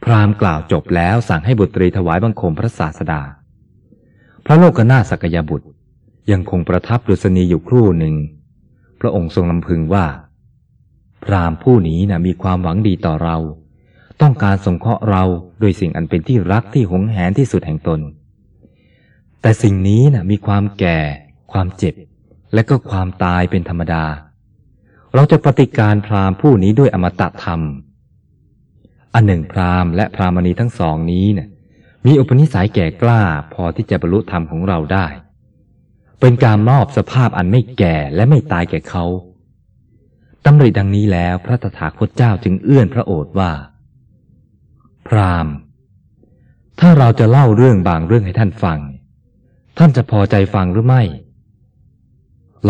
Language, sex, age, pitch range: Thai, male, 20-39, 90-115 Hz